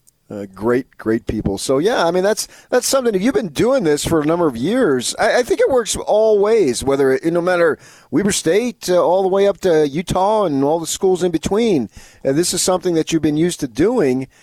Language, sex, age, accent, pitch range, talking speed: English, male, 40-59, American, 125-180 Hz, 235 wpm